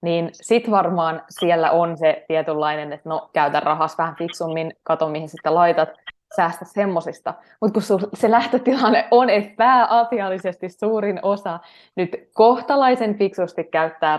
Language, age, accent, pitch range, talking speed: Finnish, 20-39, native, 155-180 Hz, 135 wpm